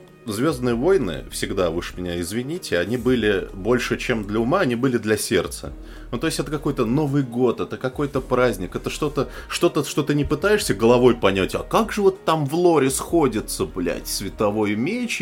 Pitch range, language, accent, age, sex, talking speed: 110-145 Hz, Russian, native, 20-39, male, 180 wpm